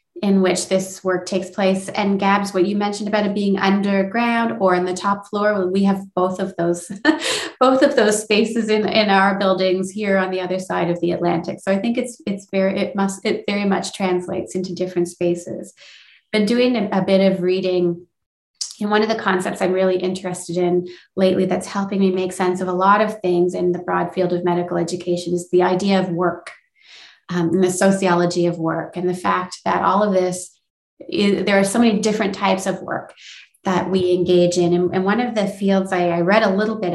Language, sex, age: English, female, 30-49